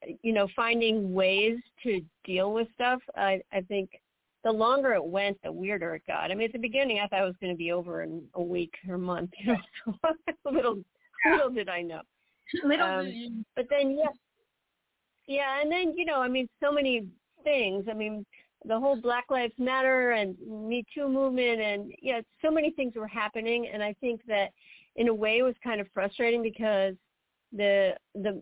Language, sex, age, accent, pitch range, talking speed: English, female, 40-59, American, 190-235 Hz, 205 wpm